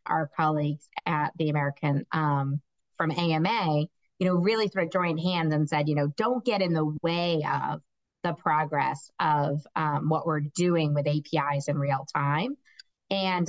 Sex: female